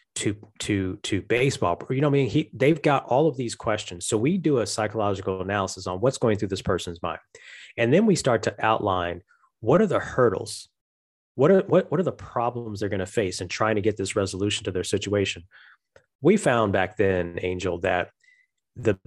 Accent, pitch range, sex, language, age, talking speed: American, 95-120 Hz, male, English, 30-49, 205 wpm